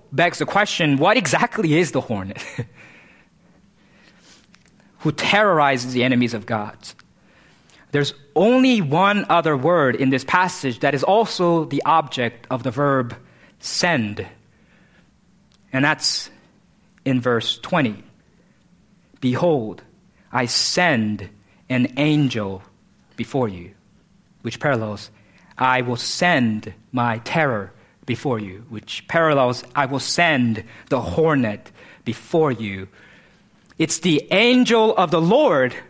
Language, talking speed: English, 110 wpm